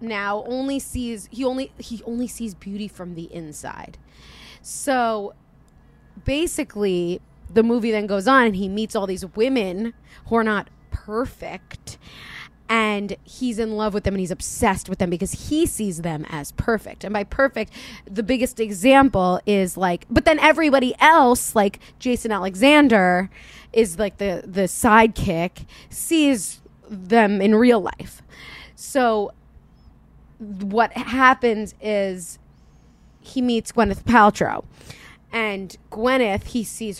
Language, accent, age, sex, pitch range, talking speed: English, American, 20-39, female, 195-250 Hz, 135 wpm